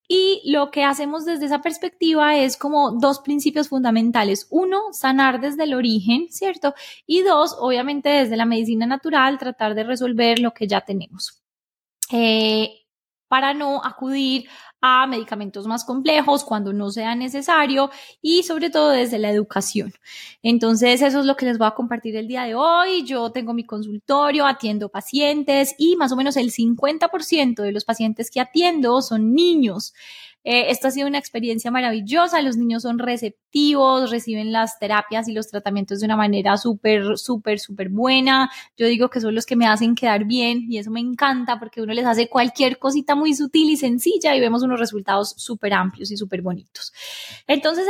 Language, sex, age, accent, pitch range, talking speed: Spanish, female, 20-39, Colombian, 225-285 Hz, 175 wpm